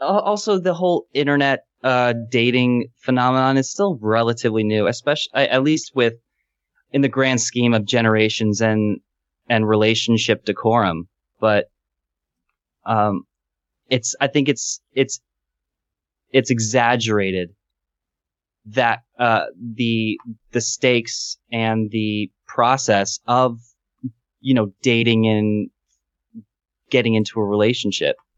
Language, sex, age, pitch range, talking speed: English, male, 20-39, 105-130 Hz, 110 wpm